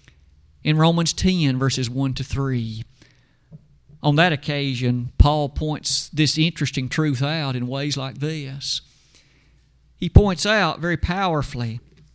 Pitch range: 130-175 Hz